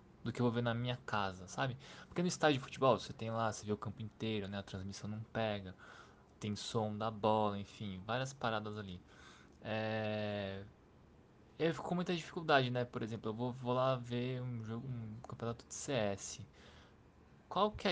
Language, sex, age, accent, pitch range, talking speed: Portuguese, male, 20-39, Brazilian, 105-125 Hz, 190 wpm